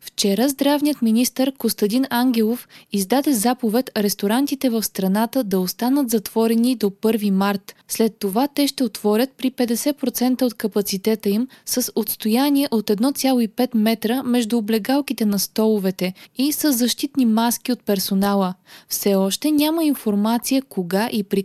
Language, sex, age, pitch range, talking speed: Bulgarian, female, 20-39, 205-255 Hz, 135 wpm